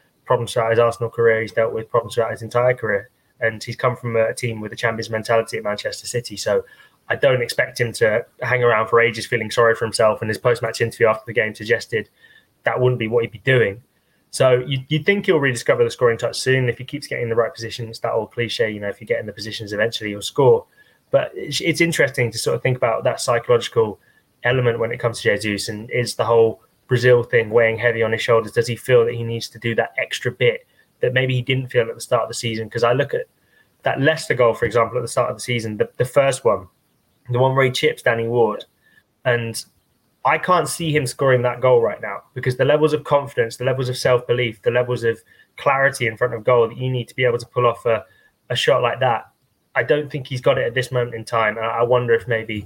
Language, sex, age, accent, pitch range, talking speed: English, male, 10-29, British, 115-130 Hz, 250 wpm